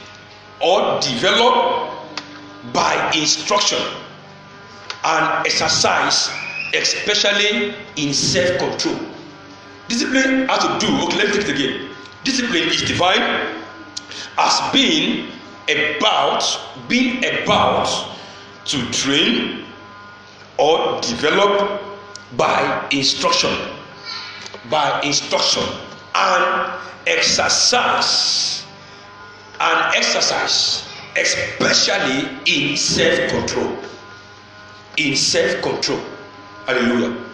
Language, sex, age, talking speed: English, male, 50-69, 70 wpm